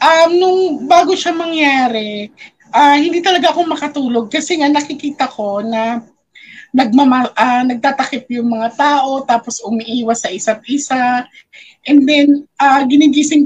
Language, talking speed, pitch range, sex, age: English, 135 wpm, 230-300 Hz, female, 20-39